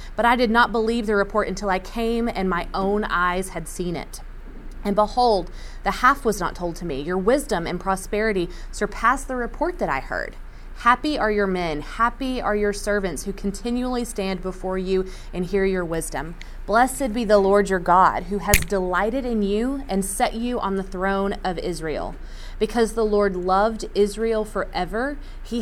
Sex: female